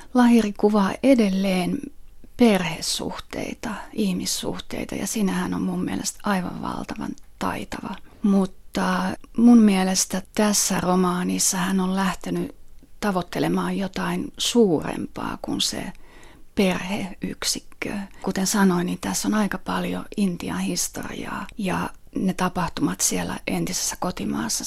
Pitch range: 175-215 Hz